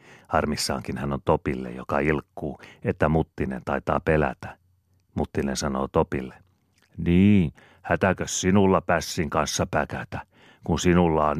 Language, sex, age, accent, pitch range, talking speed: Finnish, male, 40-59, native, 70-90 Hz, 115 wpm